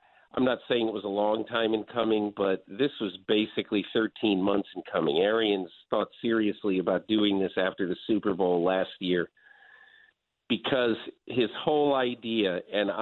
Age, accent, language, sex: 50-69, American, English, male